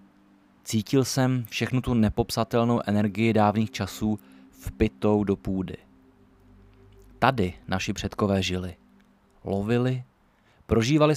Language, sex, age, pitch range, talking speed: Czech, male, 30-49, 95-130 Hz, 90 wpm